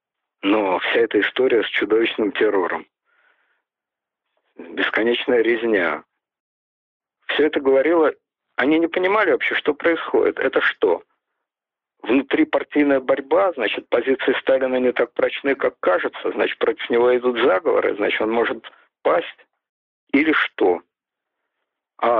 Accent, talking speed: native, 115 wpm